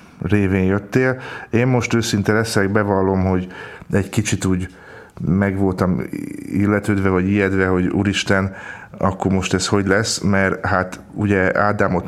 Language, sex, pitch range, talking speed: Hungarian, male, 95-110 Hz, 130 wpm